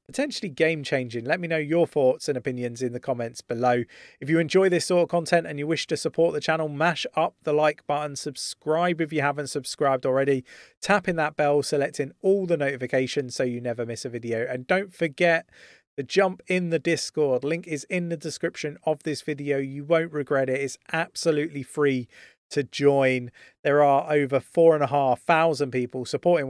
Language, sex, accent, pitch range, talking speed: English, male, British, 125-160 Hz, 195 wpm